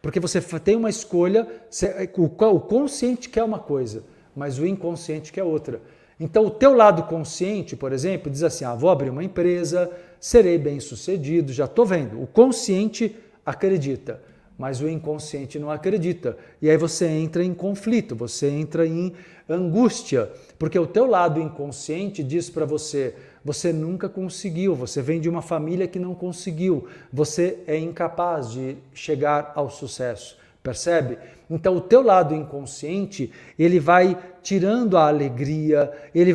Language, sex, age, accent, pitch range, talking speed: Portuguese, male, 50-69, Brazilian, 155-190 Hz, 150 wpm